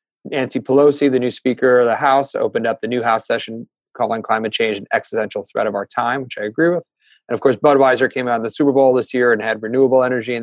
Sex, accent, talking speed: male, American, 255 wpm